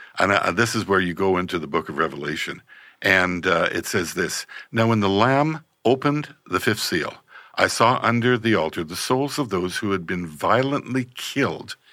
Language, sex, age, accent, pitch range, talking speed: English, male, 60-79, American, 110-145 Hz, 190 wpm